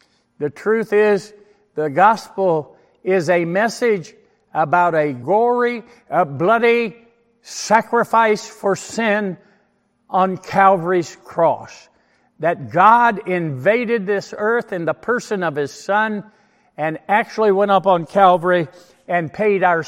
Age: 60-79